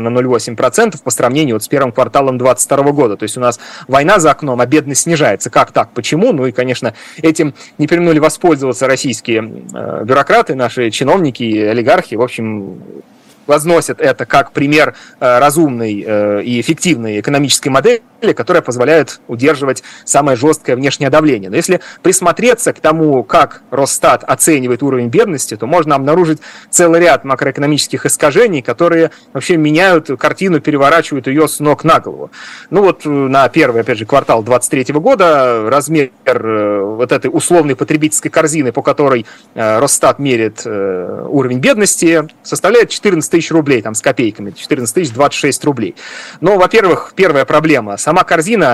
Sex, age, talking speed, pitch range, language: male, 30-49, 140 wpm, 125-160 Hz, Russian